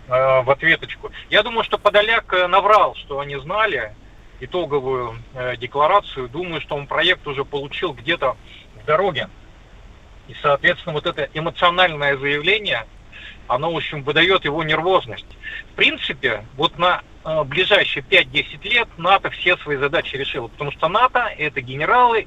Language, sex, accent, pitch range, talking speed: Russian, male, native, 135-180 Hz, 135 wpm